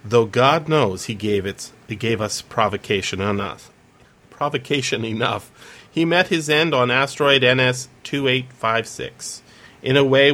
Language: English